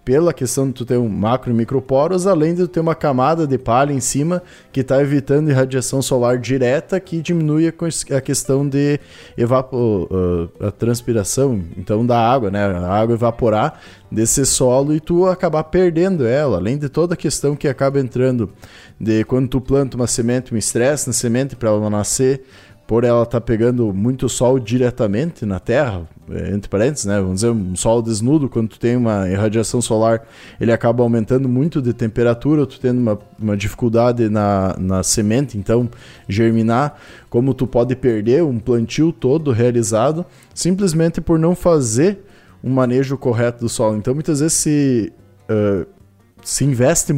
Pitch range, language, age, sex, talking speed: 110-145 Hz, Portuguese, 20-39, male, 170 wpm